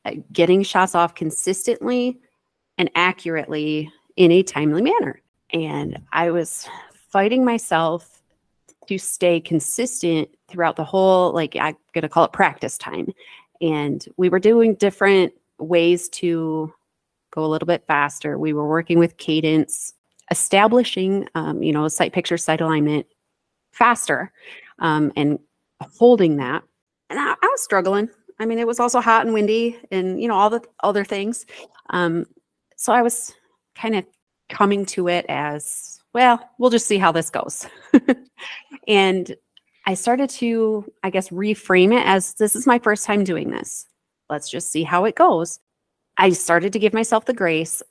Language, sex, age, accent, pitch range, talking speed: English, female, 30-49, American, 165-220 Hz, 155 wpm